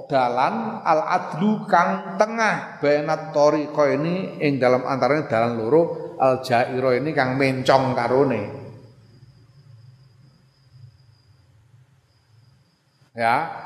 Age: 40-59